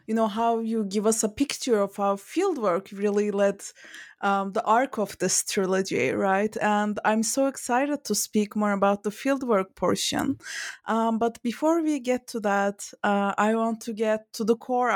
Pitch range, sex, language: 200-260 Hz, female, English